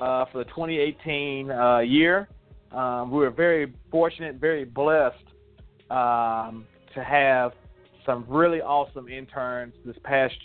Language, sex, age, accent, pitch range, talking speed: English, male, 40-59, American, 115-140 Hz, 125 wpm